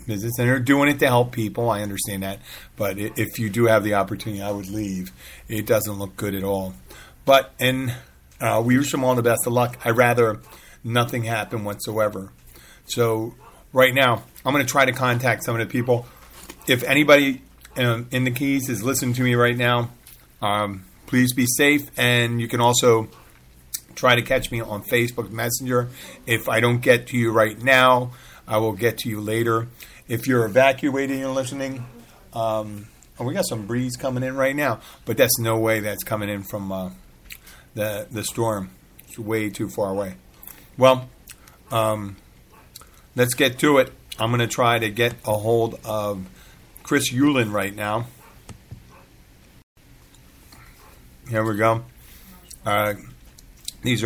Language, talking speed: English, 170 wpm